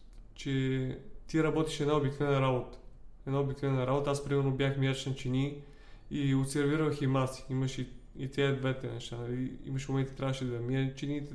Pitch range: 125-150 Hz